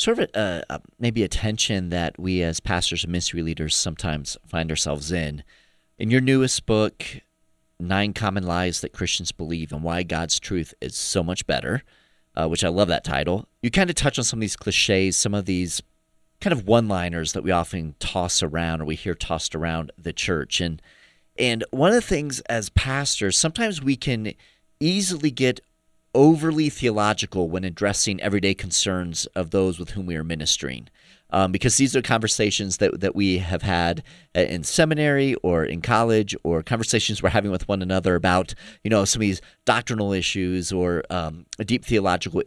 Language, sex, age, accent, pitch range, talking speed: English, male, 30-49, American, 90-120 Hz, 180 wpm